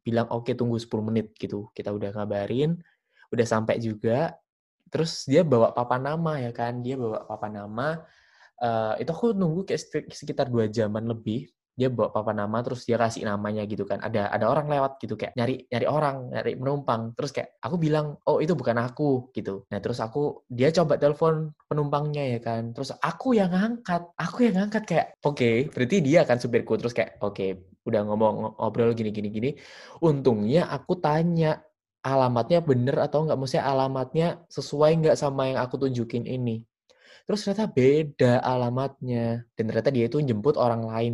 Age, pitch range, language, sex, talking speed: 20-39, 115-155 Hz, Indonesian, male, 175 wpm